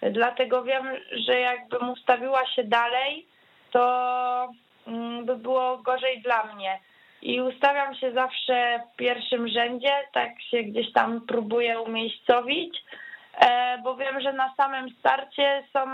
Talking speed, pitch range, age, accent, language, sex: 125 wpm, 225-265 Hz, 20-39, native, Polish, female